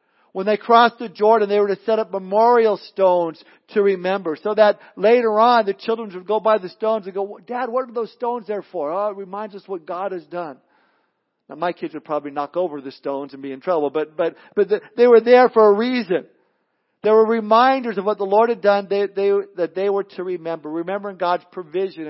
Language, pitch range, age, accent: English, 165-215 Hz, 50-69, American